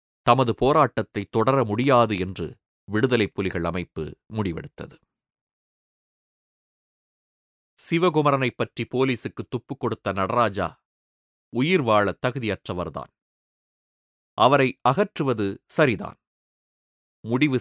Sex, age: male, 30-49